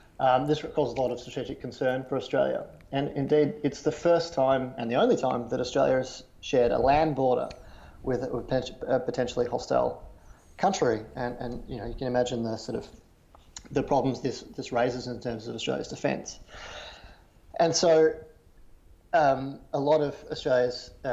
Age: 30-49